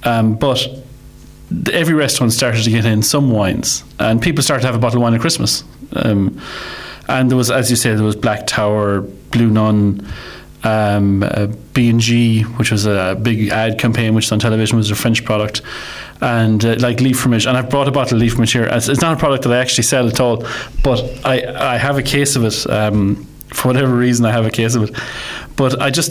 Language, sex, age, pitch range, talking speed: English, male, 30-49, 110-130 Hz, 220 wpm